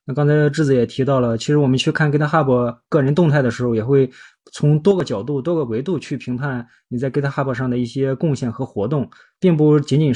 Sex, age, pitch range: male, 20-39, 125-150 Hz